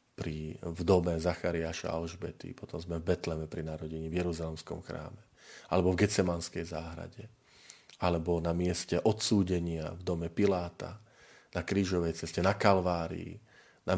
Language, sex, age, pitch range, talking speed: Slovak, male, 40-59, 85-100 Hz, 135 wpm